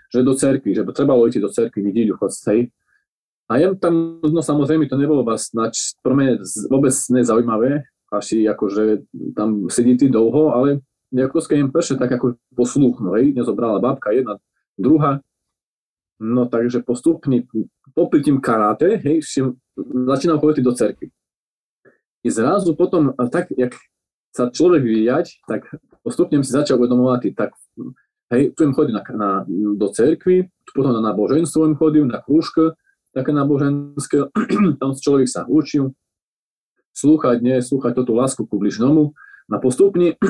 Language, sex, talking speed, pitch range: Slovak, male, 145 wpm, 120-150 Hz